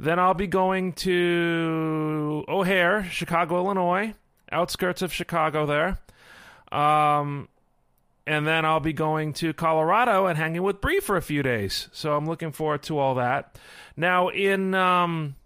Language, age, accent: English, 40-59, American